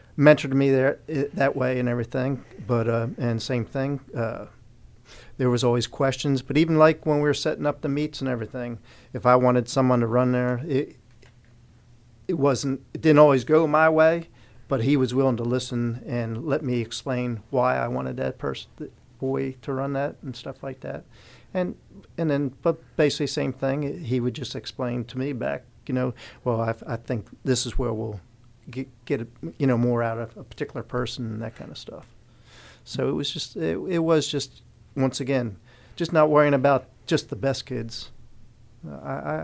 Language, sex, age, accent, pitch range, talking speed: English, male, 50-69, American, 120-140 Hz, 195 wpm